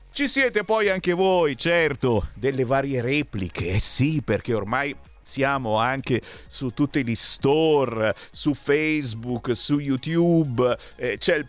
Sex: male